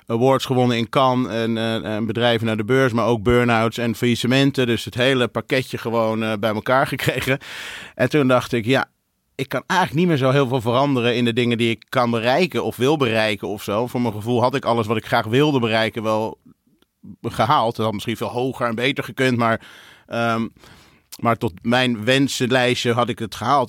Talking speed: 210 wpm